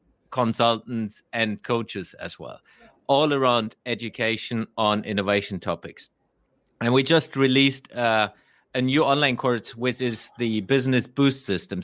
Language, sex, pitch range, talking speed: English, male, 115-140 Hz, 130 wpm